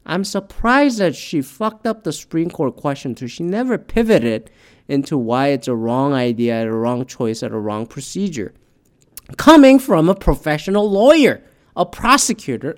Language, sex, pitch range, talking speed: English, male, 125-195 Hz, 155 wpm